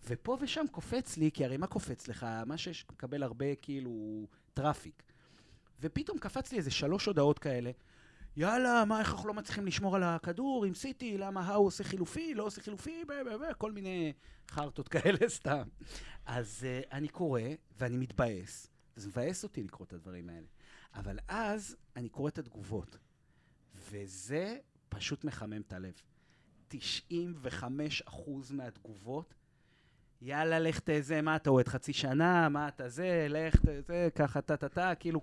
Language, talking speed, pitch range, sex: Hebrew, 160 wpm, 125-175 Hz, male